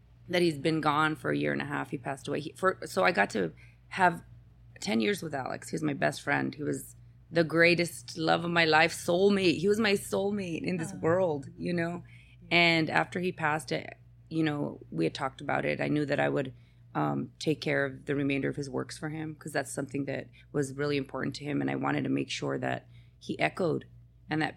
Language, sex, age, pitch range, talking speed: English, female, 30-49, 120-165 Hz, 230 wpm